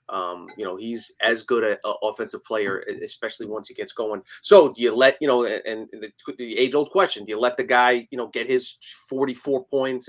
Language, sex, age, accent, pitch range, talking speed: English, male, 30-49, American, 115-145 Hz, 225 wpm